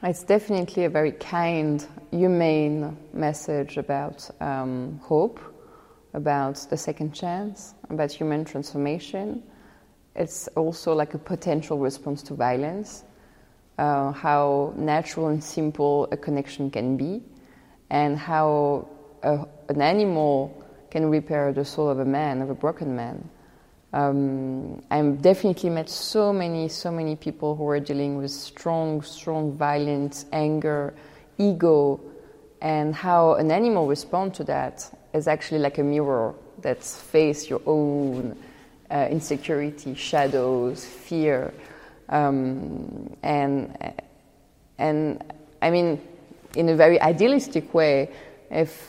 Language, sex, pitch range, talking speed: English, female, 145-160 Hz, 120 wpm